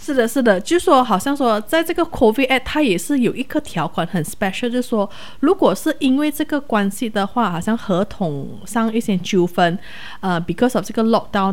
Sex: female